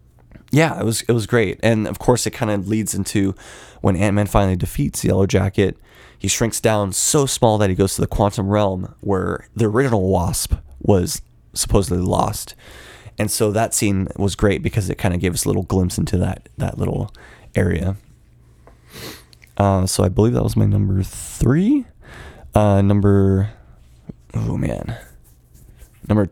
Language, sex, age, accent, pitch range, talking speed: English, male, 20-39, American, 90-115 Hz, 165 wpm